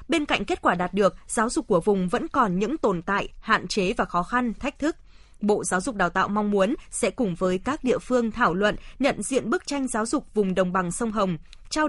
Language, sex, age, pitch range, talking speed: Vietnamese, female, 20-39, 195-250 Hz, 245 wpm